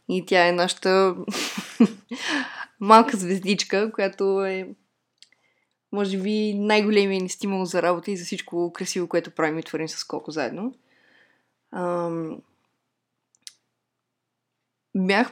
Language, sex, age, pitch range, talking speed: Bulgarian, female, 20-39, 185-240 Hz, 110 wpm